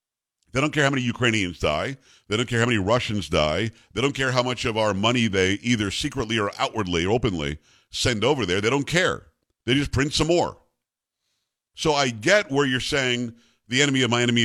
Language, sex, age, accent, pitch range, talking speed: English, male, 50-69, American, 110-145 Hz, 210 wpm